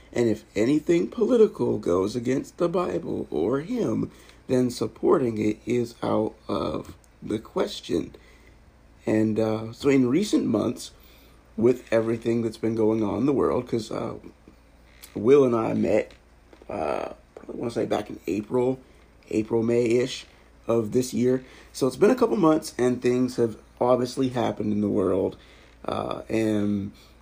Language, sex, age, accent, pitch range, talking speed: English, male, 50-69, American, 110-135 Hz, 145 wpm